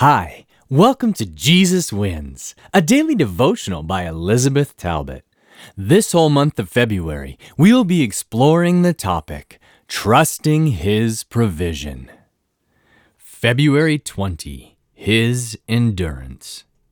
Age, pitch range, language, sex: 30-49, 90-150 Hz, English, male